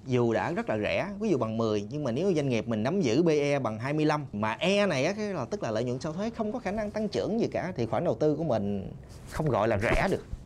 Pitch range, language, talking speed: 125-200 Hz, Vietnamese, 280 wpm